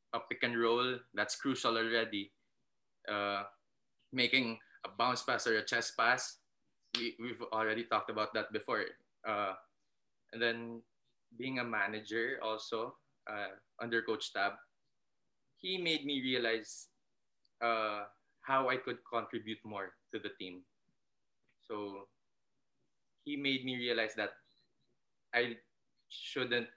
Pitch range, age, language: 110-120 Hz, 20-39, English